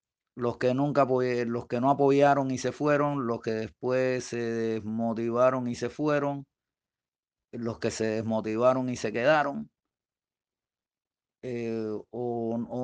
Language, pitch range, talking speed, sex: Spanish, 115-135 Hz, 130 wpm, male